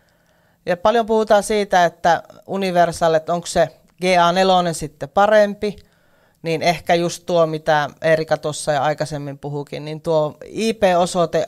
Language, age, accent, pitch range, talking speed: Finnish, 30-49, native, 155-190 Hz, 125 wpm